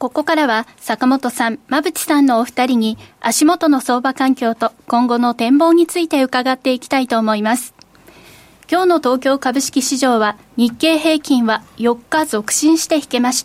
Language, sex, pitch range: Japanese, female, 240-315 Hz